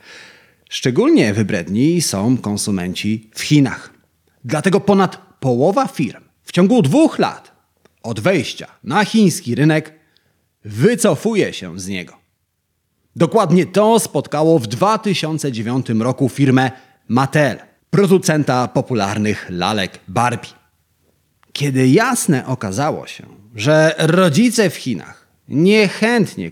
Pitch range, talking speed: 110-180 Hz, 100 wpm